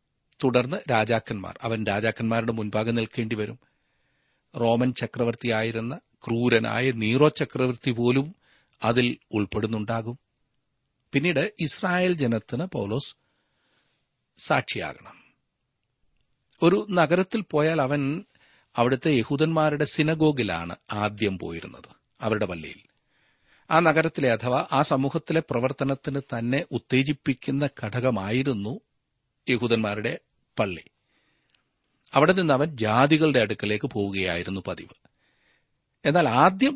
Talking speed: 80 wpm